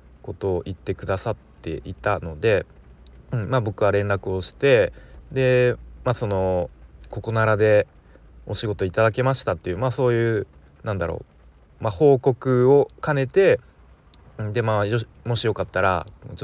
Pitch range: 90-130 Hz